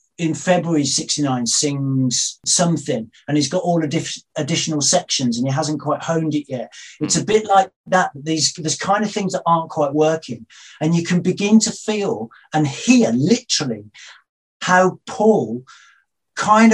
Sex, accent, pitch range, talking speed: male, British, 150-195 Hz, 160 wpm